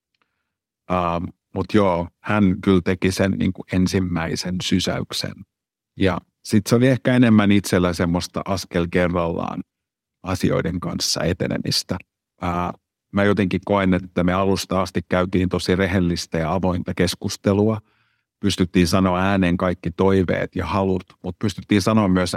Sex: male